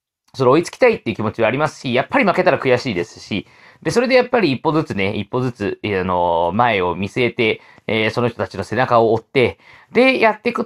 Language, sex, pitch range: Japanese, male, 110-165 Hz